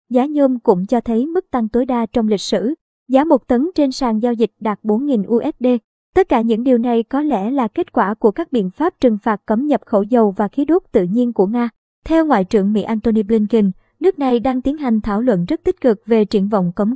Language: Vietnamese